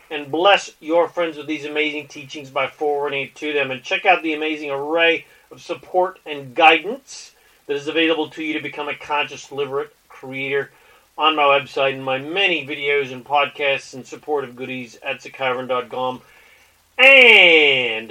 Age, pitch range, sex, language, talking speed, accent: 40-59, 145-205 Hz, male, English, 160 wpm, American